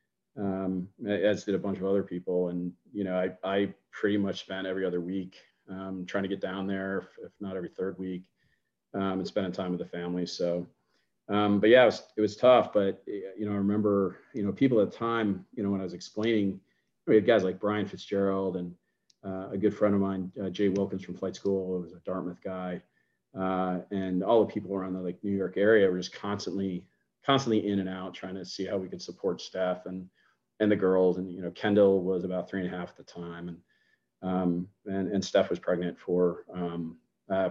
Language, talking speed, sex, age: English, 225 wpm, male, 40-59